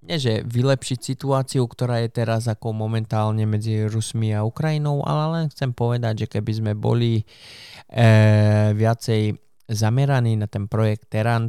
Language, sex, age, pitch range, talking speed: Slovak, male, 20-39, 105-120 Hz, 135 wpm